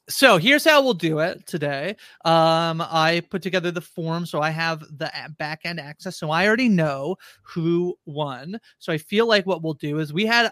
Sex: male